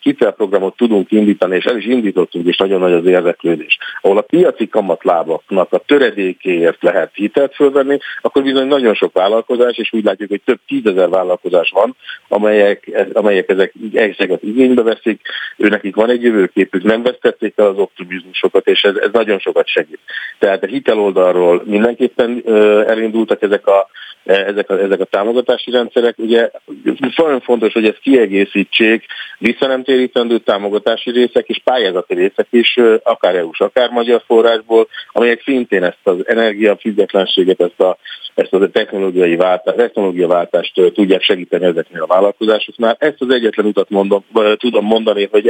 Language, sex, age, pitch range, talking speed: Hungarian, male, 50-69, 105-150 Hz, 150 wpm